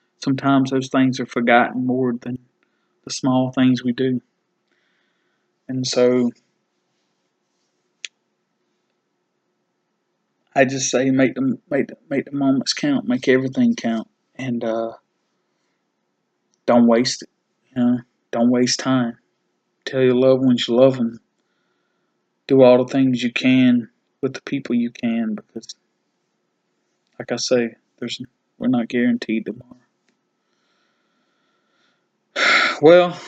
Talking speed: 120 wpm